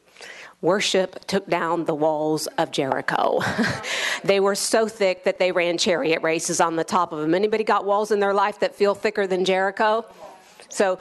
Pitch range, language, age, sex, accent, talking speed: 175-200 Hz, English, 50-69, female, American, 180 wpm